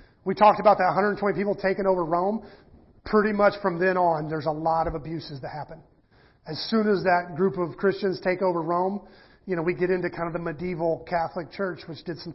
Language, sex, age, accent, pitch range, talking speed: English, male, 40-59, American, 165-205 Hz, 220 wpm